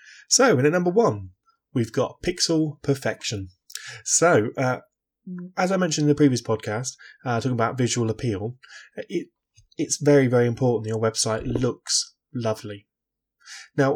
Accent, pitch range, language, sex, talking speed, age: British, 110-140 Hz, English, male, 145 wpm, 20-39